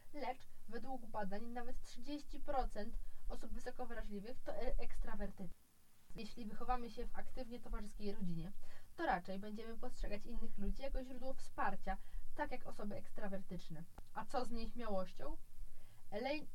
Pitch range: 195-255 Hz